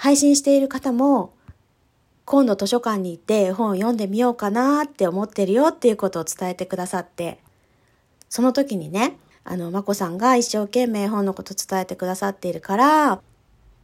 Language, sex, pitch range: Japanese, female, 190-270 Hz